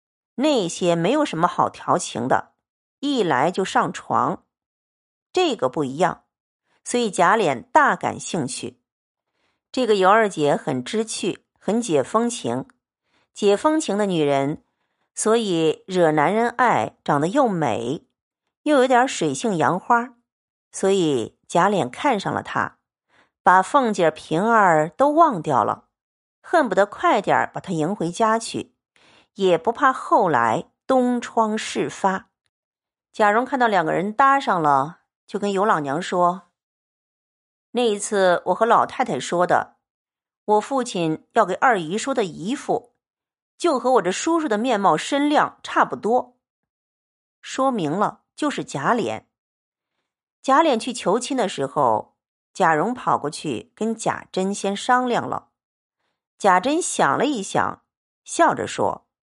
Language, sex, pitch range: Chinese, female, 175-255 Hz